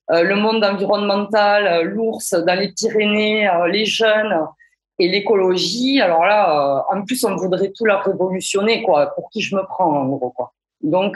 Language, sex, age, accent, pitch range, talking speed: French, female, 20-39, French, 185-220 Hz, 190 wpm